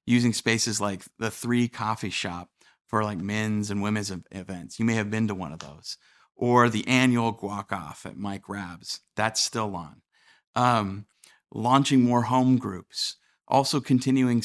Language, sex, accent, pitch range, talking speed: English, male, American, 95-115 Hz, 160 wpm